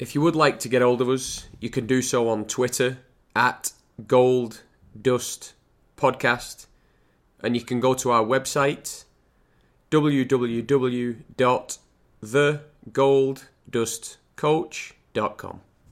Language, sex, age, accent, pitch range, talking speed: English, male, 30-49, British, 115-130 Hz, 100 wpm